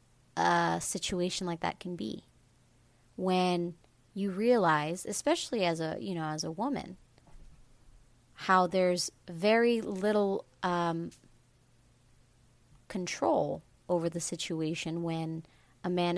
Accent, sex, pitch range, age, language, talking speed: American, female, 125-180 Hz, 30-49, English, 110 wpm